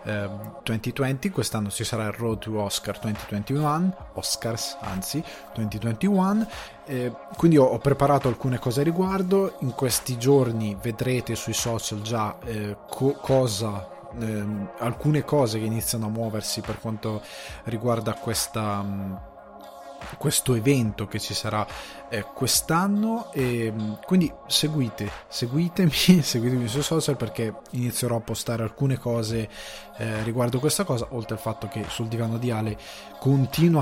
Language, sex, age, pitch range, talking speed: Italian, male, 20-39, 105-140 Hz, 135 wpm